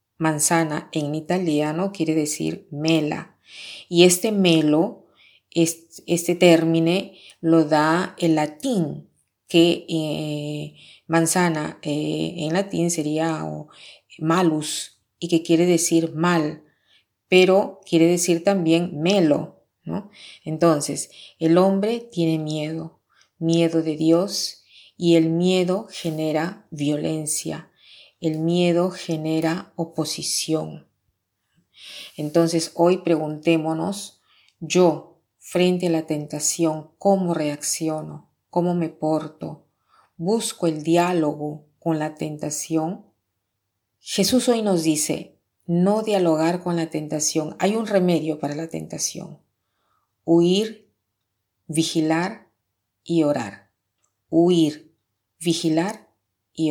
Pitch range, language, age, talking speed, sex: 155-175 Hz, Spanish, 30-49, 100 wpm, female